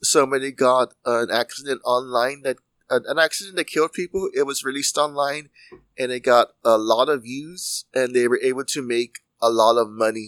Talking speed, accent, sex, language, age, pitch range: 195 wpm, American, male, English, 30-49, 115-135 Hz